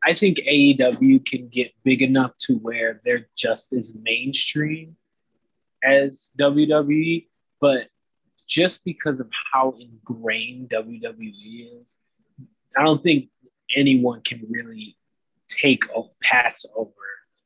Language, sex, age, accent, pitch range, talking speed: English, male, 20-39, American, 115-150 Hz, 115 wpm